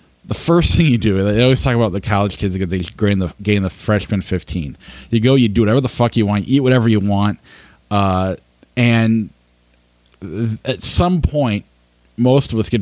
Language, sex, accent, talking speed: English, male, American, 200 wpm